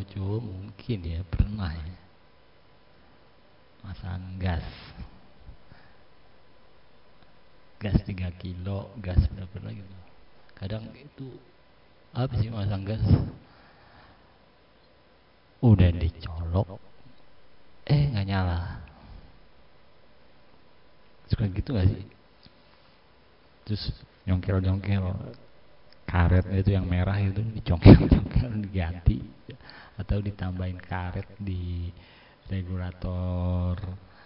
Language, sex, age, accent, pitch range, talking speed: Indonesian, male, 50-69, native, 90-110 Hz, 80 wpm